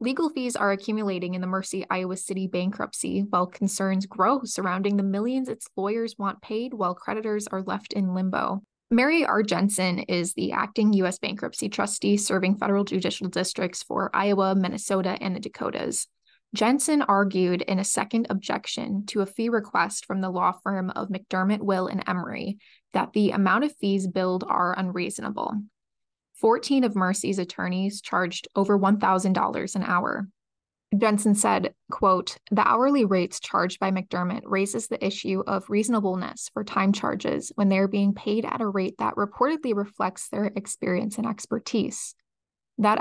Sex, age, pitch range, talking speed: female, 20-39, 190-220 Hz, 160 wpm